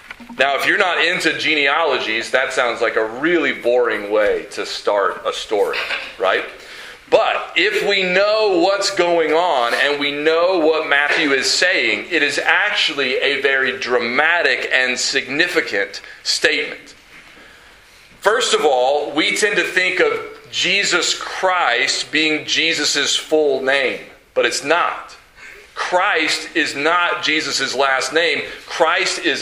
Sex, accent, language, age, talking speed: male, American, English, 40-59, 135 wpm